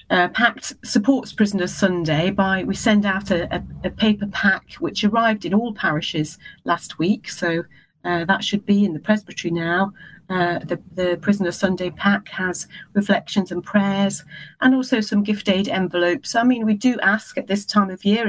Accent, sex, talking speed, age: British, female, 180 wpm, 40-59